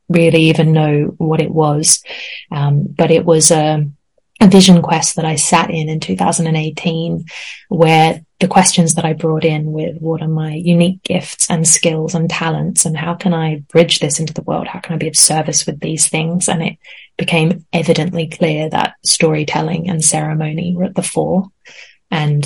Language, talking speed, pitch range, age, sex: English, 185 wpm, 155-170 Hz, 20-39, female